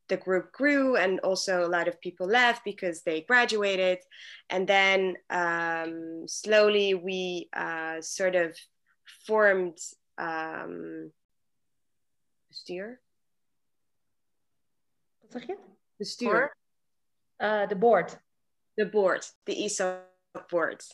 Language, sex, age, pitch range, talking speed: English, female, 20-39, 180-225 Hz, 90 wpm